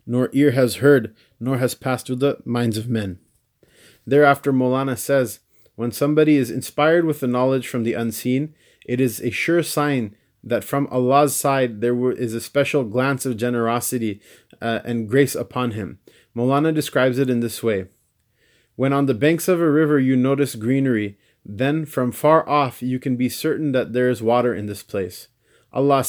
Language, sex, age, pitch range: English, male, 20-39, 120-140 Hz